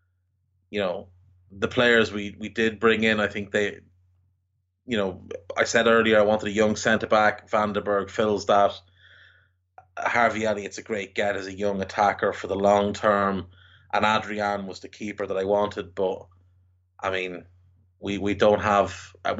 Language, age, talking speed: English, 20-39, 165 wpm